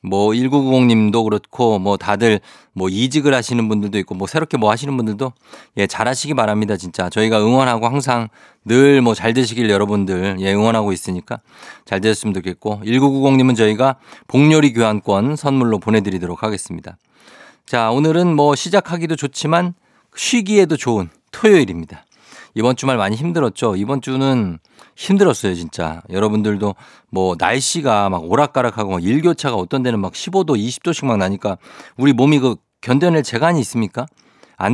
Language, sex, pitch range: Korean, male, 100-140 Hz